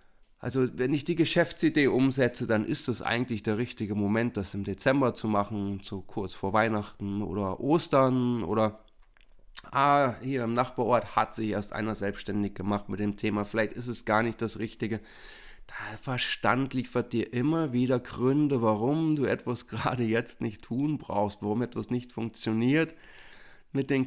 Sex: male